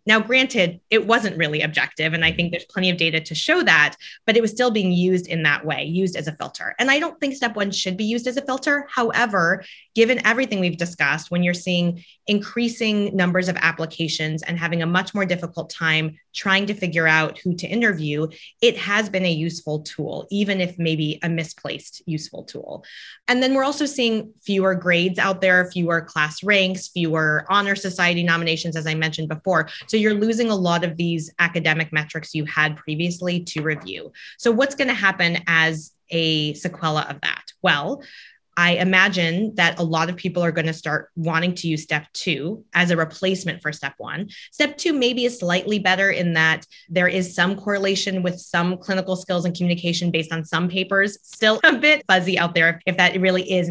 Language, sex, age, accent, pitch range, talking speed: English, female, 20-39, American, 165-200 Hz, 200 wpm